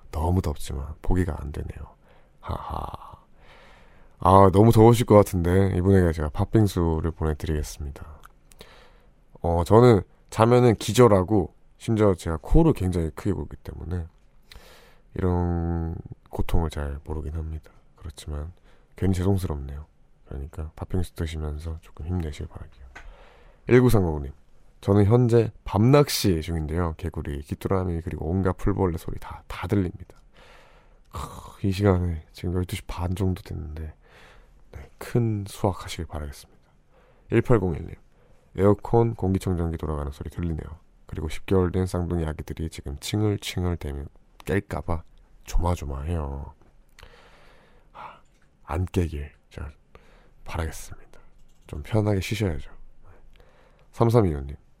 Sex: male